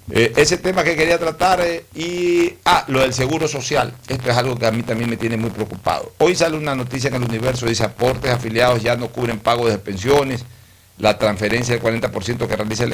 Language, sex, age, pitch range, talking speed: Spanish, male, 60-79, 105-130 Hz, 220 wpm